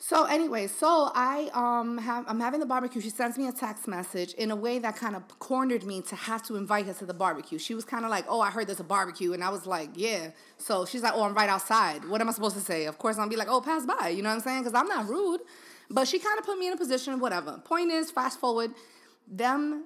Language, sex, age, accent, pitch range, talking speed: English, female, 20-39, American, 205-260 Hz, 285 wpm